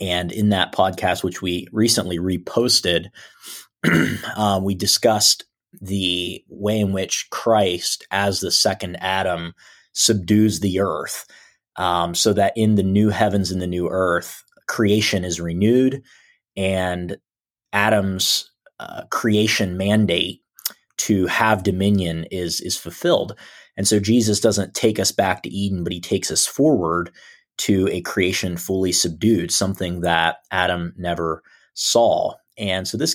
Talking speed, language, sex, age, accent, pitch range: 135 wpm, English, male, 30-49, American, 90-110 Hz